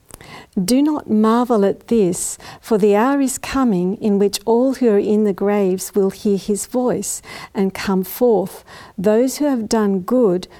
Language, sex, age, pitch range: English, female, 50-69, 200-230 Hz